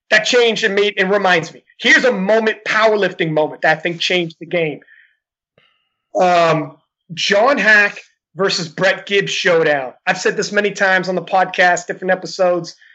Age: 30-49